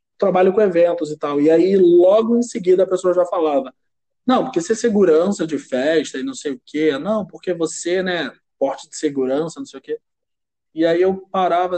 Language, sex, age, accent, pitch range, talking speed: Portuguese, male, 20-39, Brazilian, 155-195 Hz, 210 wpm